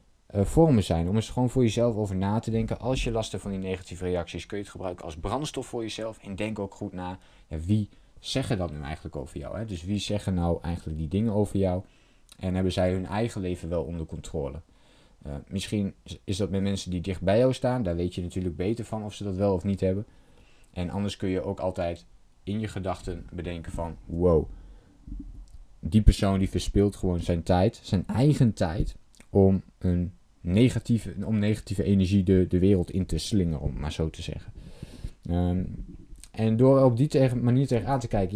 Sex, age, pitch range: male, 20-39, 90-105 Hz